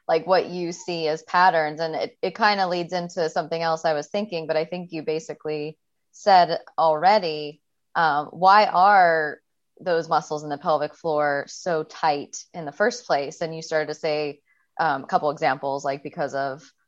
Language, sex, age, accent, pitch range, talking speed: English, female, 20-39, American, 150-170 Hz, 180 wpm